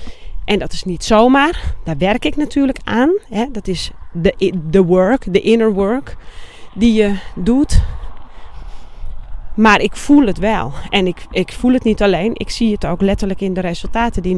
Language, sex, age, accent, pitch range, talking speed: Dutch, female, 30-49, Dutch, 185-250 Hz, 170 wpm